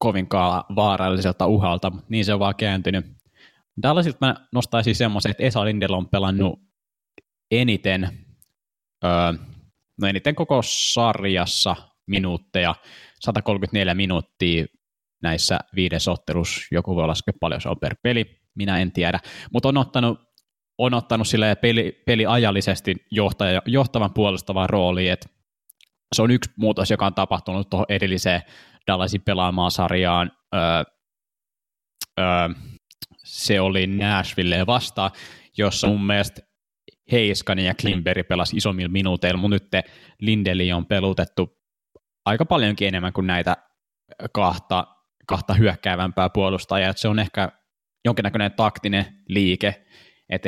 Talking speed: 115 wpm